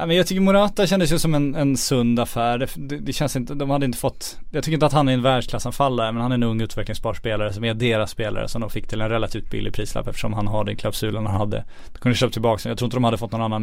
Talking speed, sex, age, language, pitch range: 275 wpm, male, 20-39, Swedish, 110-135 Hz